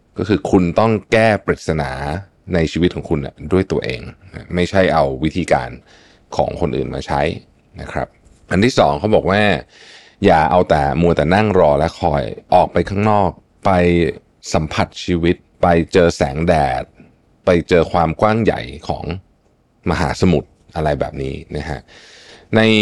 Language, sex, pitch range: Thai, male, 80-105 Hz